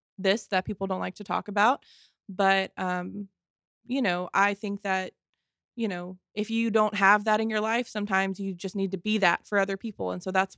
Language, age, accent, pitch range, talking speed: English, 20-39, American, 195-225 Hz, 215 wpm